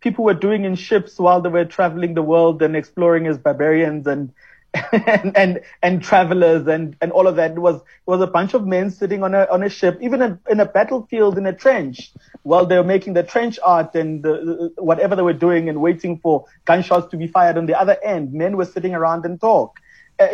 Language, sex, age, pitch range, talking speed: English, male, 30-49, 155-190 Hz, 235 wpm